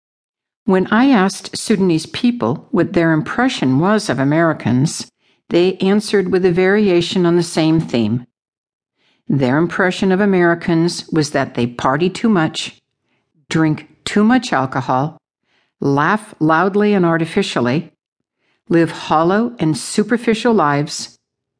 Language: English